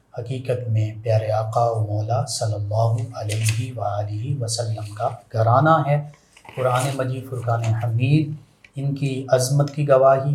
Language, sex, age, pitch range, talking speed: Urdu, male, 30-49, 115-135 Hz, 135 wpm